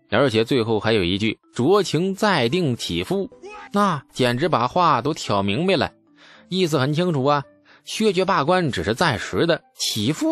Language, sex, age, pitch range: Chinese, male, 20-39, 105-155 Hz